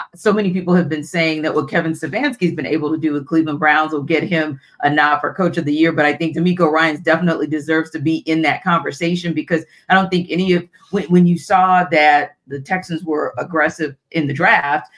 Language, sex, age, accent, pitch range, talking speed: English, female, 40-59, American, 155-180 Hz, 230 wpm